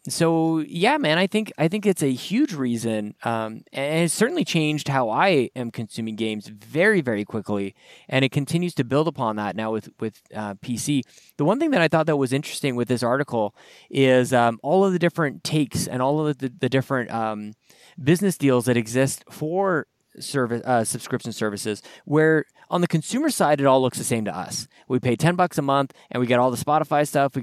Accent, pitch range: American, 120-160 Hz